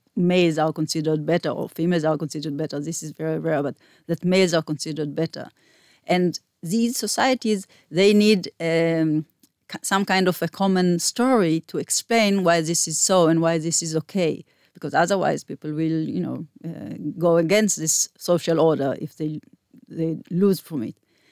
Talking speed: 170 wpm